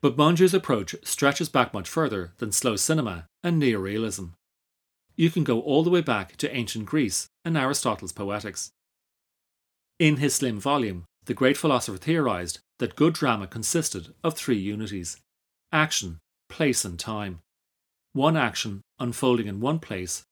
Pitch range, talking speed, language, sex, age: 95-140 Hz, 150 wpm, English, male, 30-49